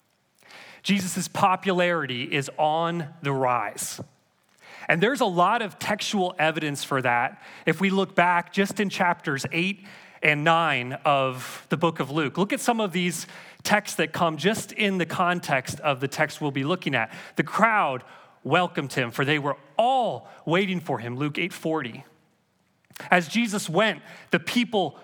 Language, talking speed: English, 160 wpm